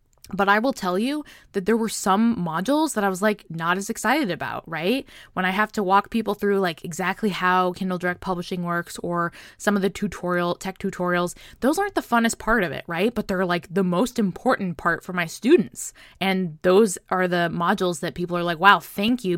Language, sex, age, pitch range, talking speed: English, female, 20-39, 180-235 Hz, 215 wpm